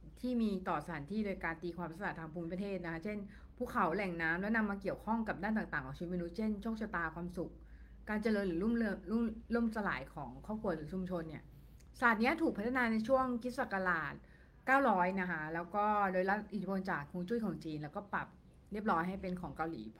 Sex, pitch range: female, 165-215 Hz